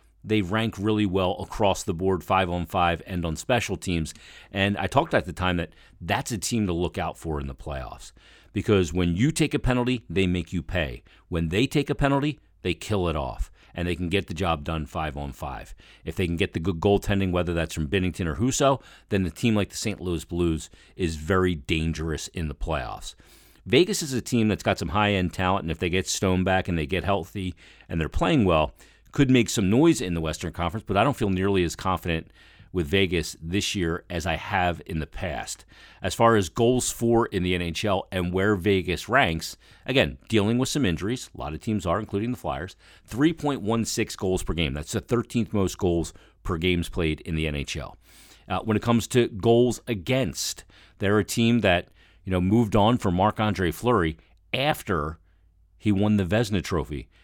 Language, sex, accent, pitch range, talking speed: English, male, American, 85-105 Hz, 210 wpm